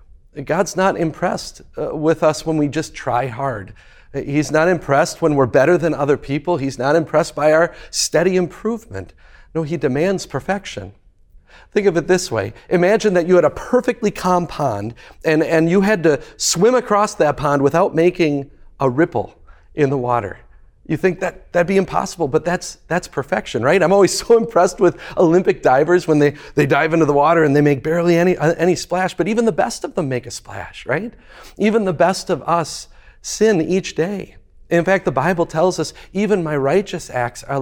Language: English